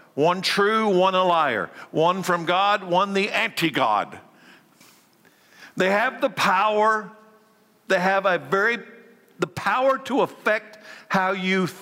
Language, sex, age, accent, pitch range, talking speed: English, male, 60-79, American, 150-210 Hz, 125 wpm